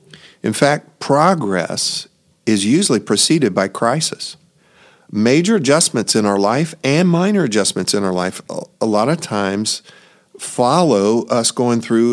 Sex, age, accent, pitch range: male, 50-69, American, 100-130 Hz